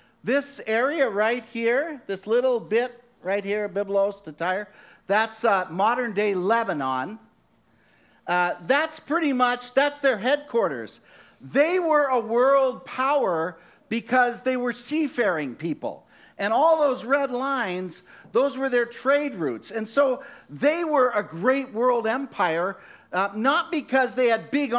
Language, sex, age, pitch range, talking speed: English, male, 50-69, 205-265 Hz, 140 wpm